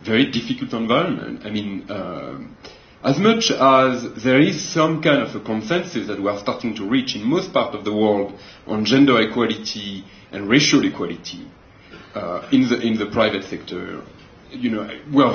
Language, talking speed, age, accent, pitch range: English, 175 wpm, 40-59, French, 105-140 Hz